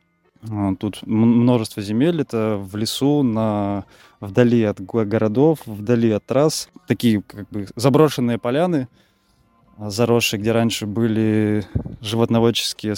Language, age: Russian, 20-39